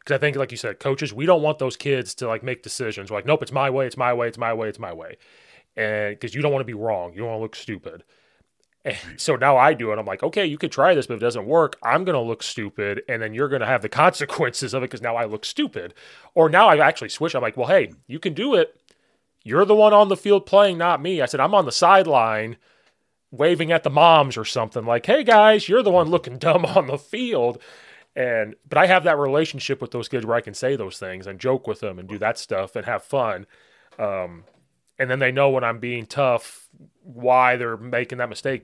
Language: English